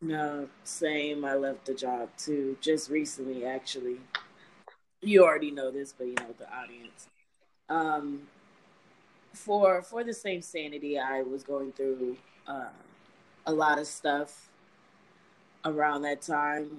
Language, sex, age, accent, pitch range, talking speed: English, female, 20-39, American, 140-170 Hz, 130 wpm